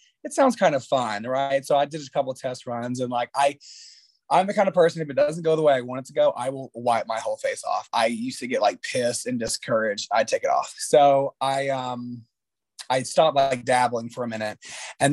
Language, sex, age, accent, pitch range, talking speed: English, male, 30-49, American, 125-155 Hz, 255 wpm